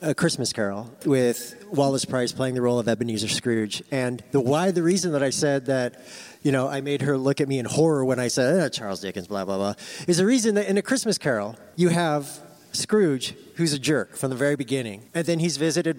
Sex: male